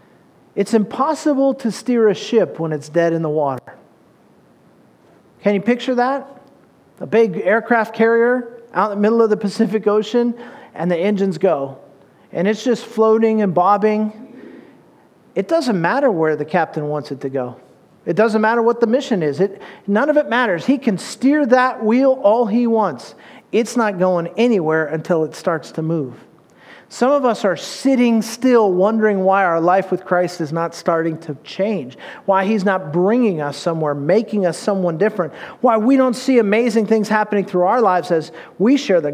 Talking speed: 180 wpm